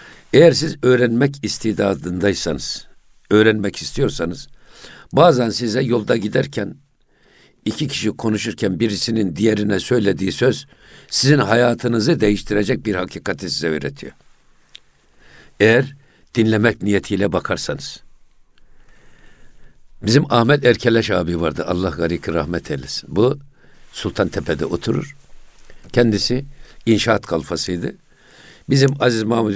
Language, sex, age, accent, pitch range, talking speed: Turkish, male, 60-79, native, 90-120 Hz, 95 wpm